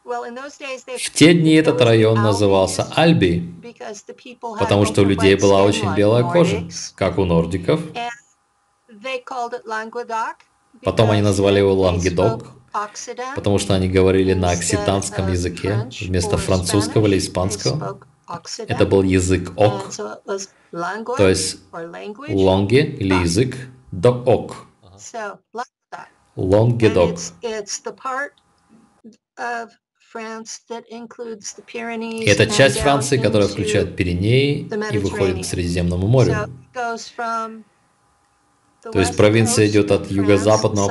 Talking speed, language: 90 wpm, Russian